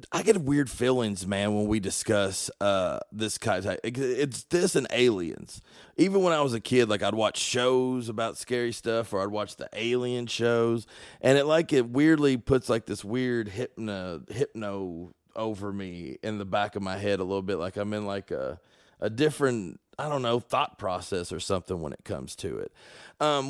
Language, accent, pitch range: English, American, 100-125 Hz